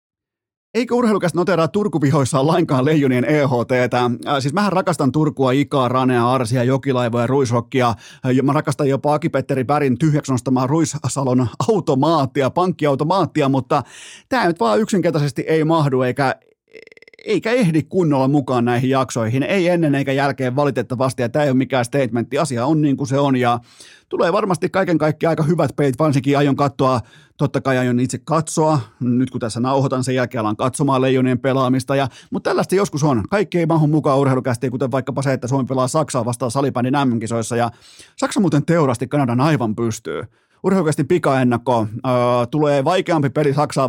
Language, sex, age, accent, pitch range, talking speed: Finnish, male, 30-49, native, 125-155 Hz, 155 wpm